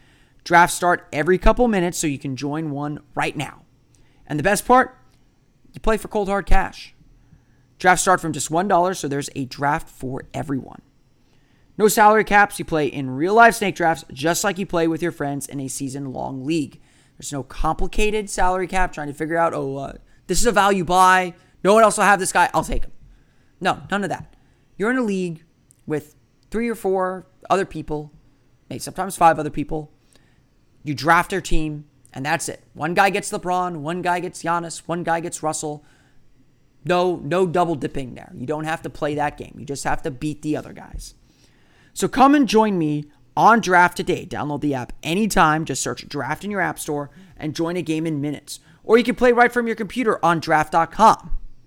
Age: 30-49